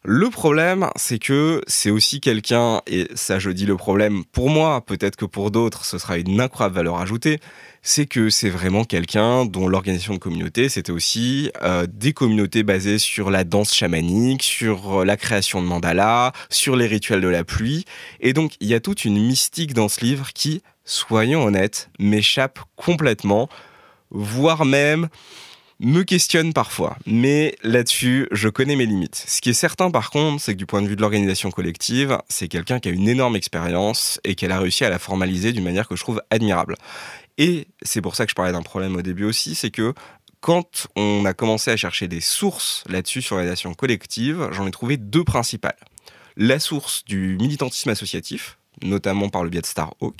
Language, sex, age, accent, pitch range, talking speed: French, male, 20-39, French, 95-130 Hz, 190 wpm